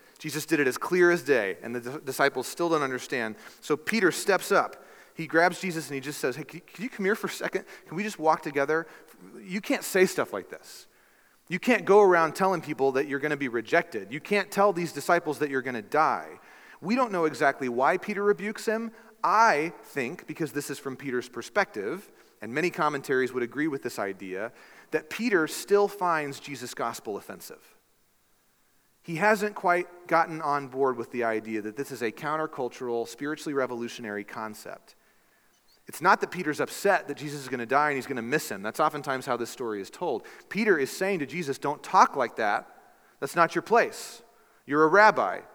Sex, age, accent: male, 30-49, American